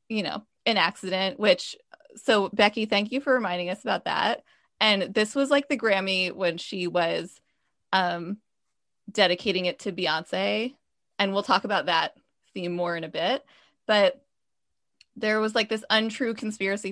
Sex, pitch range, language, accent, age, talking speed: female, 185-235 Hz, English, American, 20-39, 160 wpm